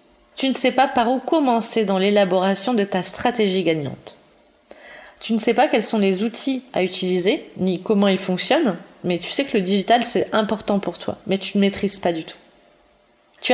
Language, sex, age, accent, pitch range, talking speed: French, female, 20-39, French, 185-235 Hz, 200 wpm